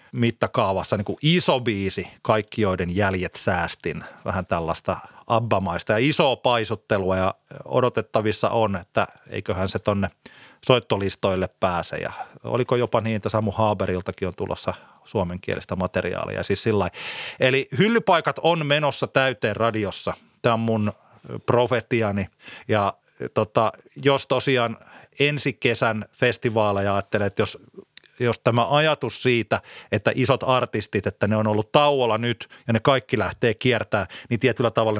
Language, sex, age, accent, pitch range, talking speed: Finnish, male, 30-49, native, 105-130 Hz, 130 wpm